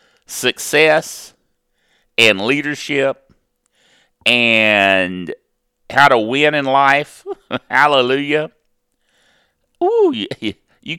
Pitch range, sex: 135-170 Hz, male